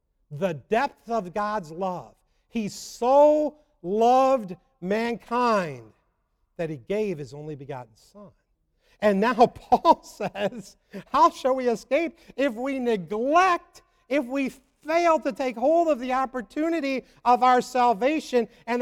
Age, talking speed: 50-69, 130 wpm